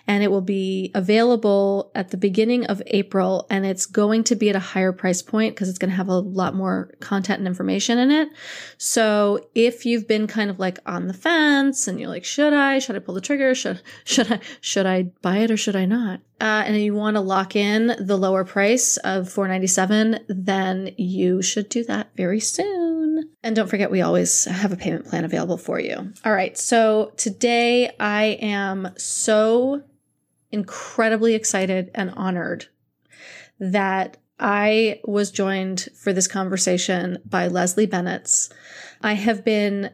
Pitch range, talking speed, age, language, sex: 185-220 Hz, 180 wpm, 20-39, English, female